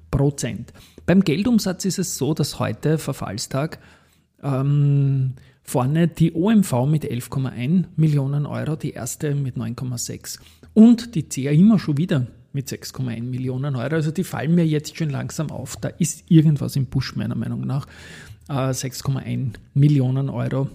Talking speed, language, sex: 145 wpm, German, male